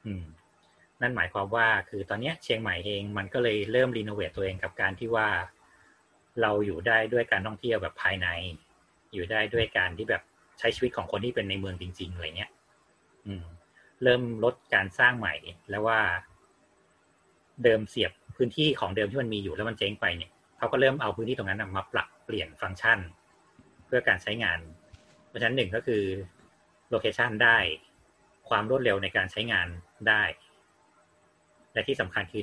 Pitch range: 95-115 Hz